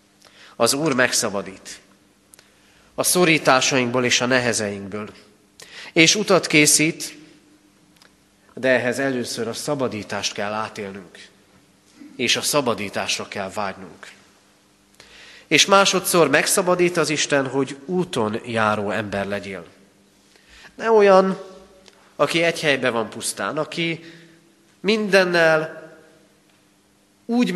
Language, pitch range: Hungarian, 105-165 Hz